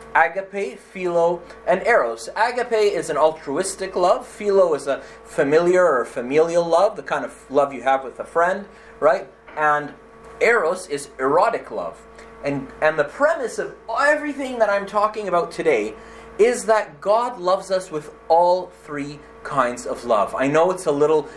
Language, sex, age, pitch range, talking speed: English, male, 30-49, 145-210 Hz, 165 wpm